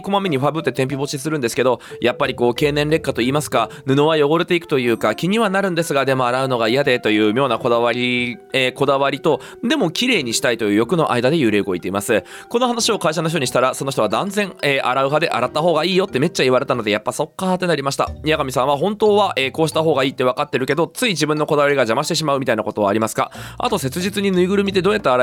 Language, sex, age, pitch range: Japanese, male, 20-39, 115-165 Hz